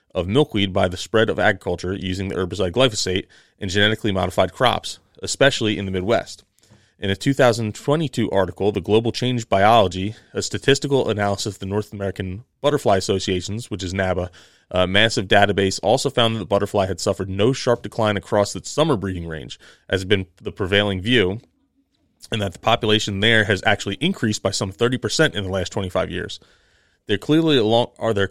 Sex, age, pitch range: male, 30-49, 95-120 Hz